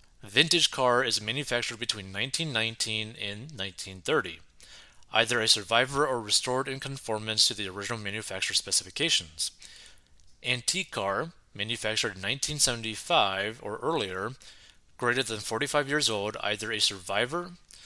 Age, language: 30-49, English